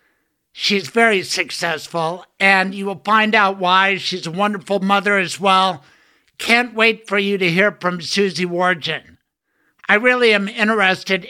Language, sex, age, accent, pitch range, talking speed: English, male, 60-79, American, 180-210 Hz, 150 wpm